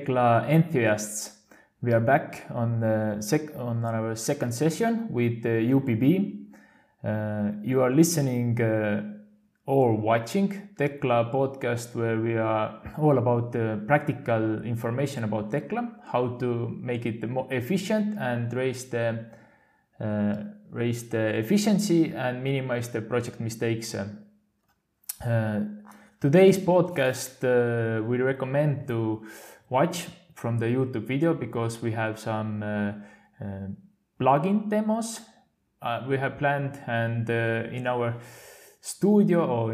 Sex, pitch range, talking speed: male, 115-140 Hz, 120 wpm